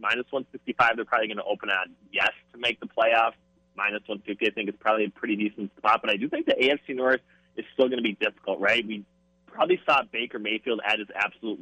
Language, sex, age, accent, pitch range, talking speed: English, male, 30-49, American, 100-120 Hz, 250 wpm